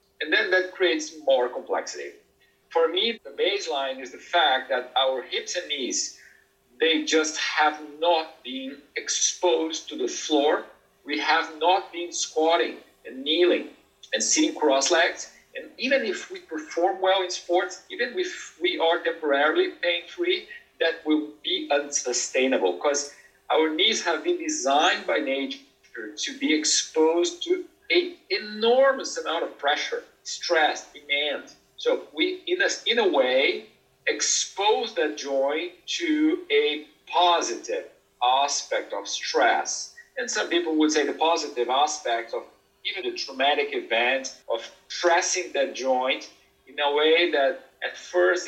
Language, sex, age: English, male, 50-69